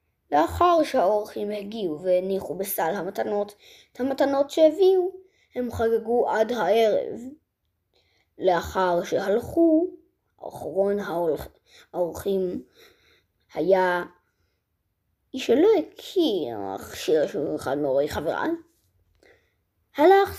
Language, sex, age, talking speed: Hebrew, female, 20-39, 80 wpm